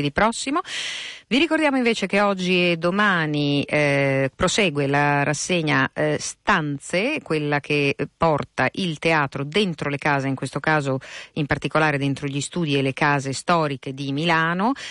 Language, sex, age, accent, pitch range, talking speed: Italian, female, 50-69, native, 140-170 Hz, 150 wpm